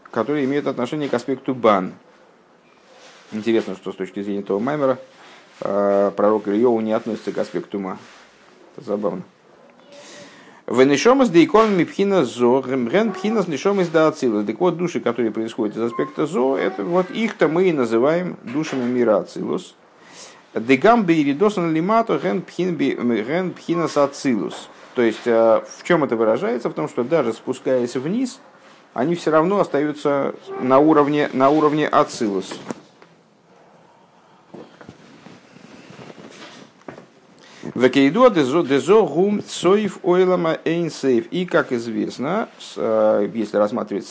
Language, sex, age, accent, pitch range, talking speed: Russian, male, 50-69, native, 115-175 Hz, 110 wpm